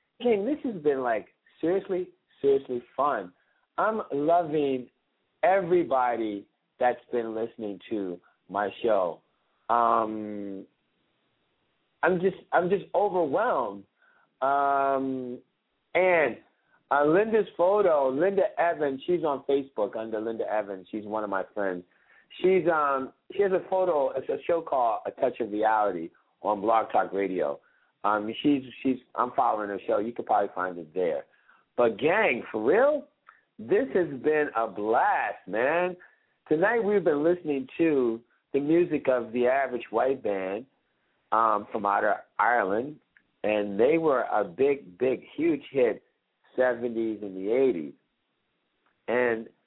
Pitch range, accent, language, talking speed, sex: 110-175 Hz, American, English, 135 wpm, male